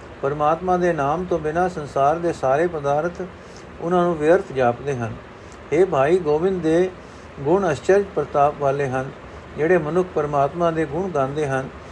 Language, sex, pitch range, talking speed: Punjabi, male, 140-180 Hz, 150 wpm